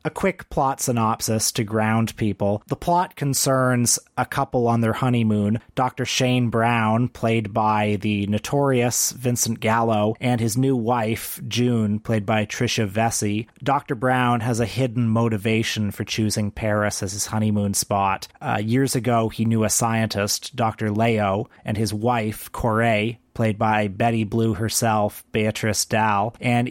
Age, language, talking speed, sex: 30-49, English, 150 wpm, male